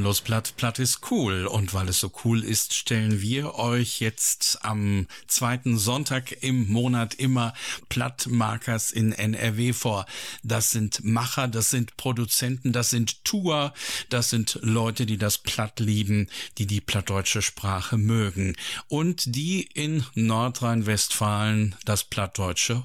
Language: German